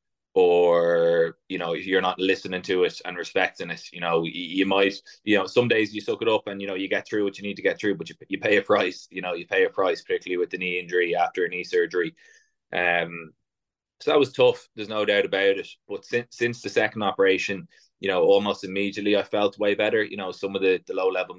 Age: 20-39